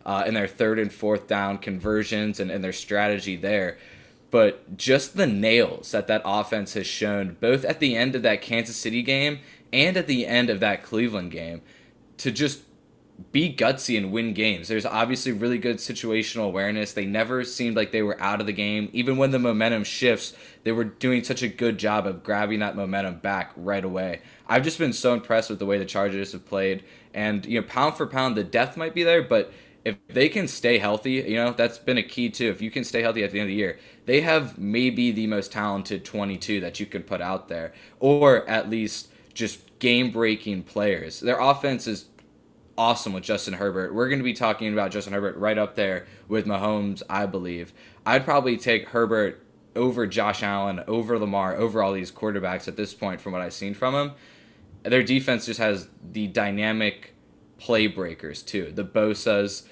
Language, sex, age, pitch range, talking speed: English, male, 10-29, 100-120 Hz, 205 wpm